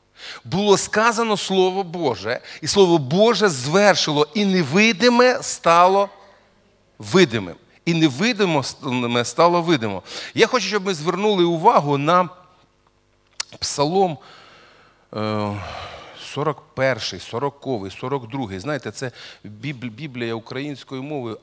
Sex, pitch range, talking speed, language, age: male, 115-170 Hz, 90 wpm, Russian, 40-59